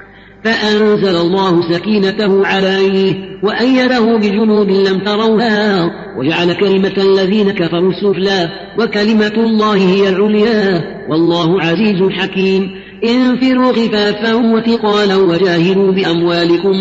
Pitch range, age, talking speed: 190-215 Hz, 40-59, 90 wpm